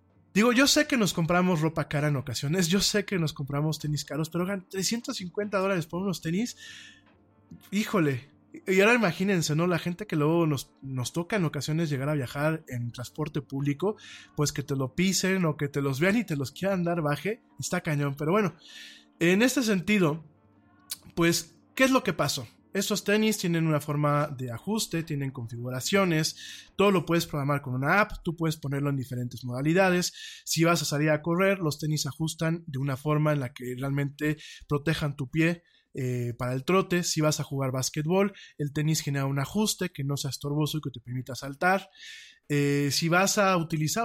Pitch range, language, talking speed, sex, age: 145-185 Hz, Spanish, 195 wpm, male, 20-39